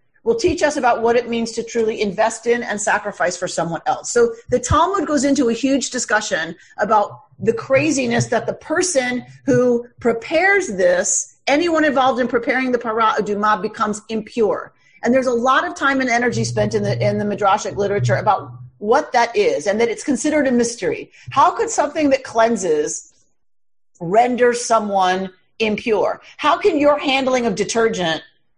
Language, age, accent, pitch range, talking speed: English, 40-59, American, 195-260 Hz, 170 wpm